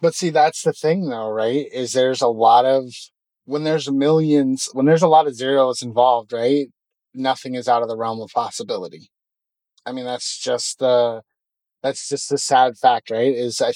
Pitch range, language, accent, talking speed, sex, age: 120-145 Hz, English, American, 190 wpm, male, 30-49